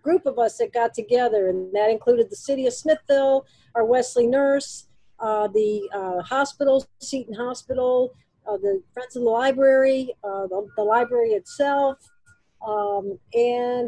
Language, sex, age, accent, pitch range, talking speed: English, female, 50-69, American, 225-275 Hz, 150 wpm